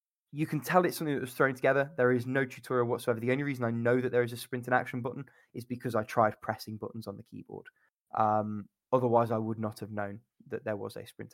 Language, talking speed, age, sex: English, 255 wpm, 20-39, male